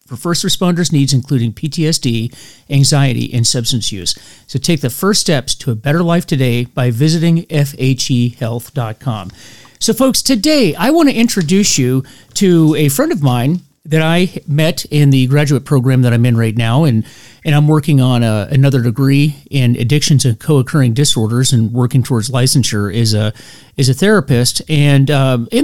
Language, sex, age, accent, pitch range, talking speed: English, male, 40-59, American, 130-165 Hz, 170 wpm